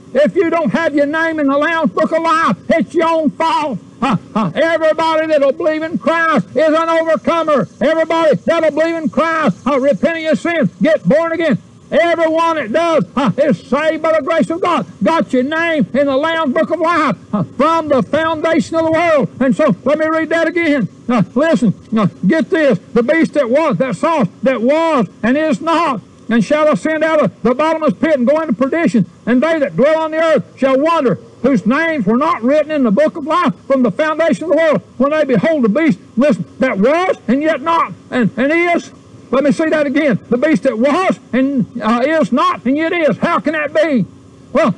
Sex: male